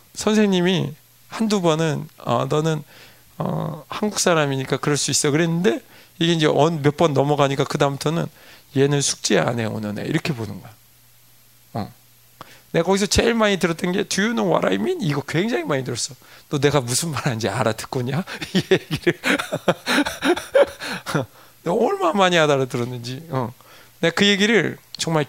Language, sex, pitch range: Korean, male, 130-180 Hz